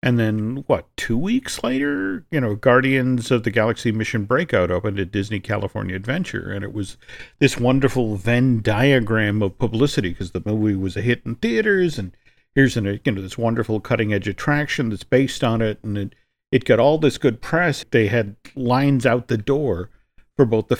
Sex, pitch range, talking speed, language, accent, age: male, 110-140 Hz, 190 wpm, English, American, 50-69